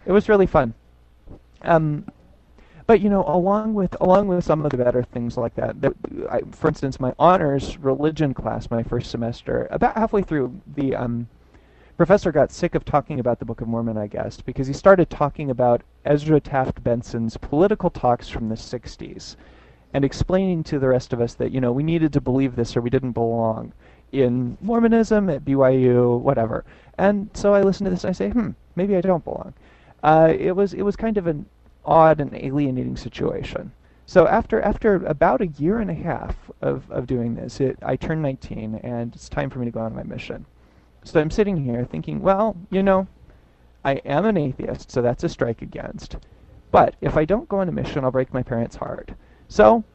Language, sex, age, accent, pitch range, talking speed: English, male, 30-49, American, 120-185 Hz, 200 wpm